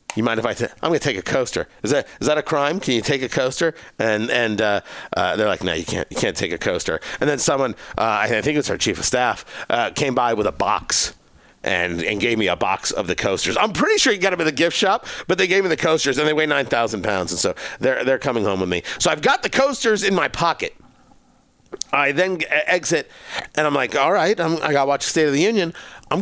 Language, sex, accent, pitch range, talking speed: English, male, American, 140-215 Hz, 270 wpm